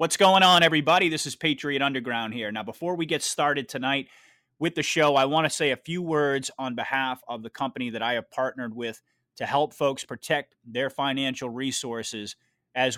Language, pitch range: English, 120-145 Hz